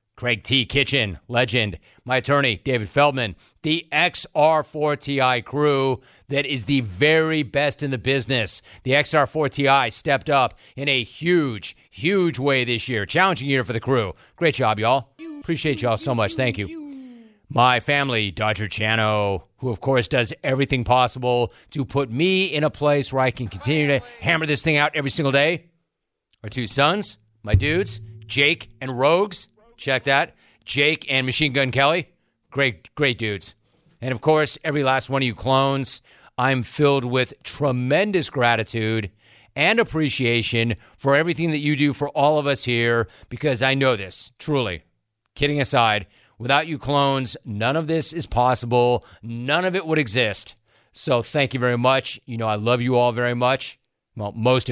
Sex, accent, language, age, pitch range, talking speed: male, American, English, 40-59, 115-145 Hz, 165 wpm